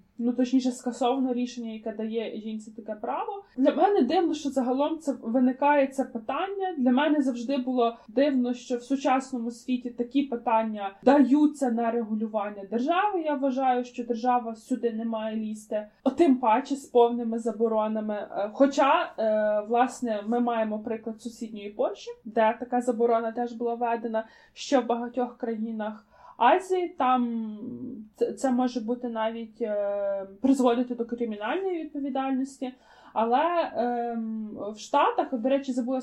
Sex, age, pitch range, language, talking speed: female, 20-39, 230-270 Hz, Ukrainian, 135 wpm